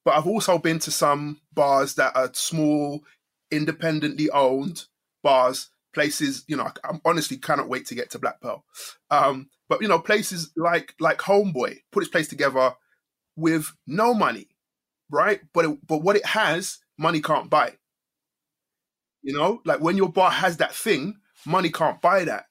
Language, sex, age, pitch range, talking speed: English, male, 20-39, 150-195 Hz, 170 wpm